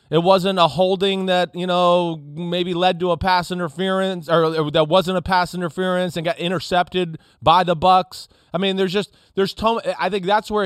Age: 30-49